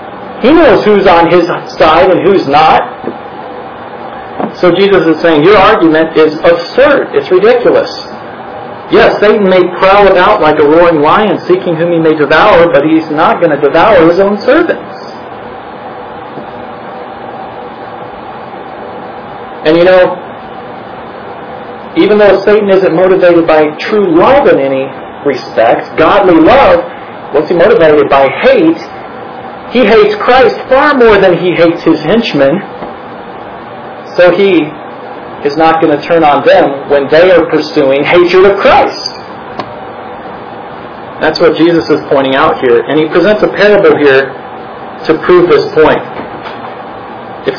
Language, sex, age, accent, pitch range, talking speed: English, male, 50-69, American, 155-200 Hz, 135 wpm